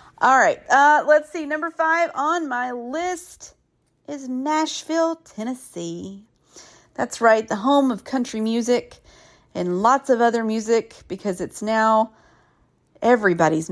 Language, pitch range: English, 200-280 Hz